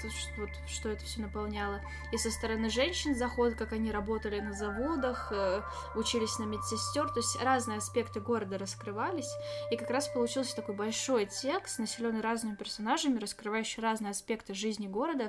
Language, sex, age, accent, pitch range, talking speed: Russian, female, 10-29, native, 205-245 Hz, 150 wpm